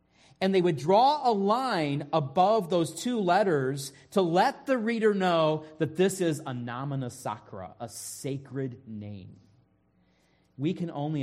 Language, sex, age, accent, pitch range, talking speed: English, male, 30-49, American, 115-155 Hz, 145 wpm